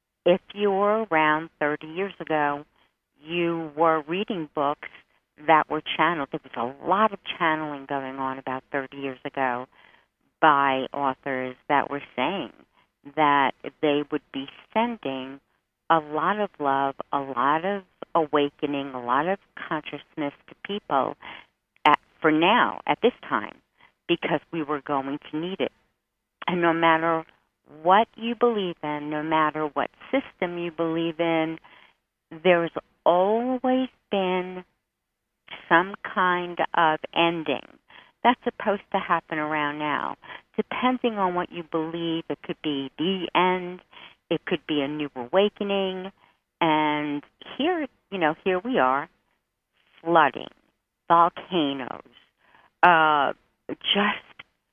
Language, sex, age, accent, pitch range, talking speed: English, female, 50-69, American, 145-185 Hz, 125 wpm